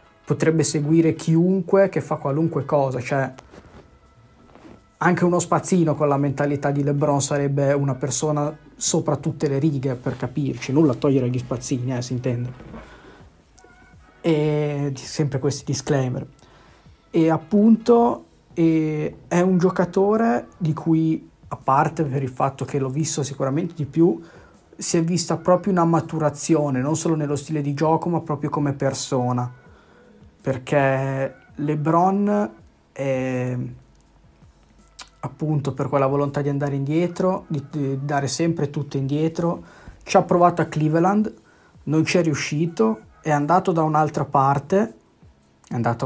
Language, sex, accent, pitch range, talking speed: Italian, male, native, 135-165 Hz, 135 wpm